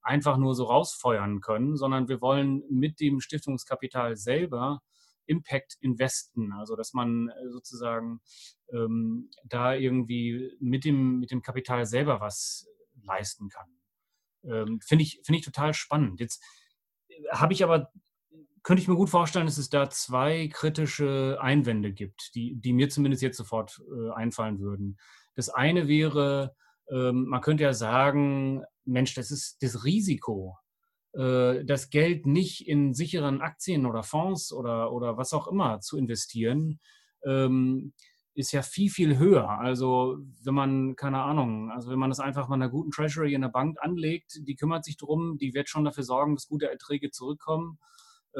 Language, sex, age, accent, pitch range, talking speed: German, male, 30-49, German, 125-150 Hz, 155 wpm